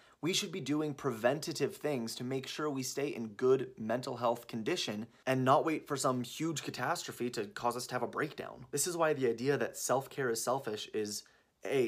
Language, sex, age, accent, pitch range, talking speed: English, male, 30-49, American, 115-140 Hz, 205 wpm